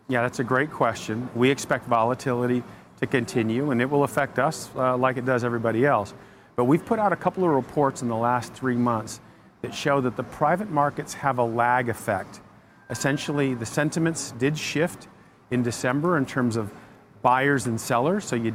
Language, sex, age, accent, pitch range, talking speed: English, male, 40-59, American, 120-145 Hz, 190 wpm